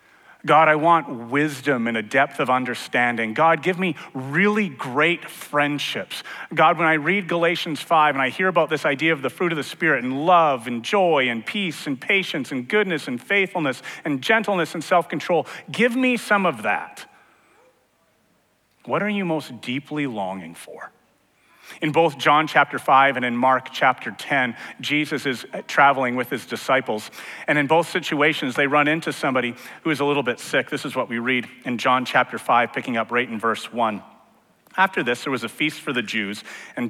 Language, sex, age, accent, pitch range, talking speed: English, male, 40-59, American, 125-170 Hz, 190 wpm